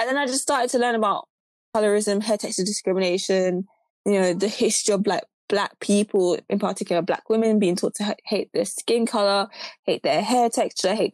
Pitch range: 190-225 Hz